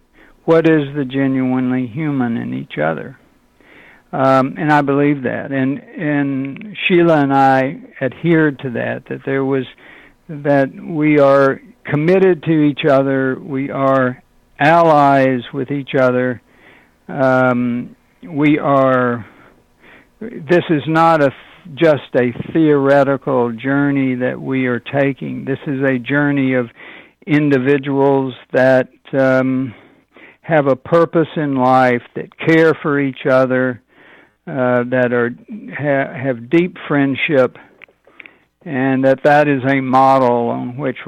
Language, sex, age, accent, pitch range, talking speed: English, male, 60-79, American, 130-155 Hz, 125 wpm